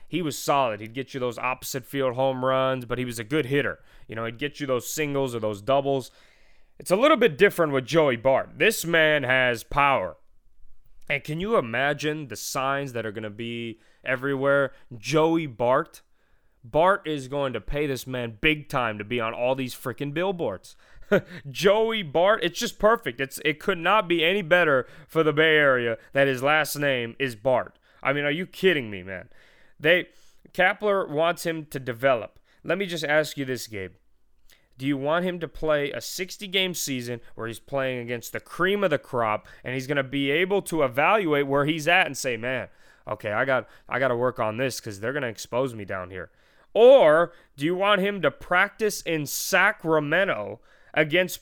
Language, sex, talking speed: English, male, 195 wpm